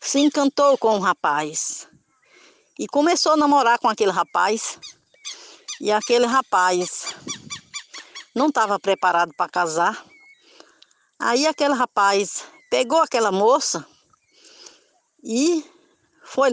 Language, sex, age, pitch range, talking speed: Portuguese, female, 60-79, 195-290 Hz, 105 wpm